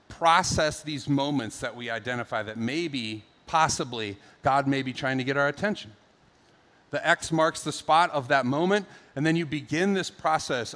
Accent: American